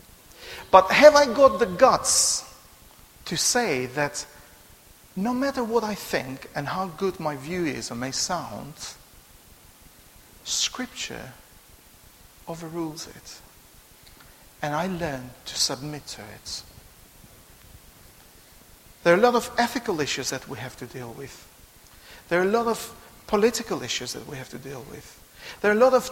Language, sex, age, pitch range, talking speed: English, male, 50-69, 130-210 Hz, 145 wpm